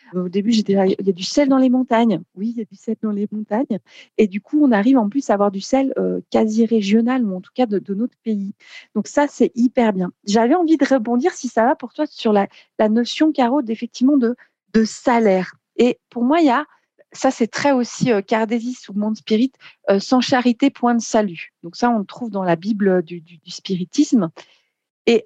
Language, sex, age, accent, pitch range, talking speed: French, female, 40-59, French, 210-270 Hz, 235 wpm